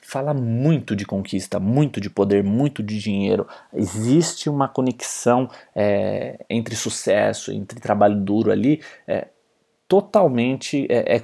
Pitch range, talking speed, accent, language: 110-130 Hz, 115 wpm, Brazilian, Portuguese